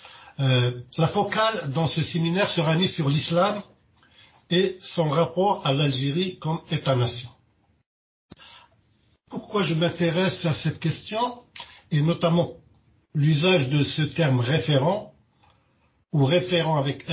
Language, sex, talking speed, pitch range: French, male, 115 wpm, 135-175 Hz